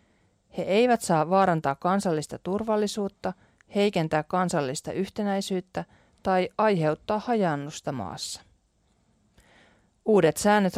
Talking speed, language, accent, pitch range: 85 wpm, Finnish, native, 145-195 Hz